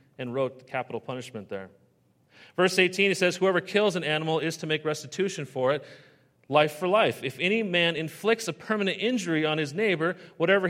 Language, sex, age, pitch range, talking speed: English, male, 40-59, 130-190 Hz, 185 wpm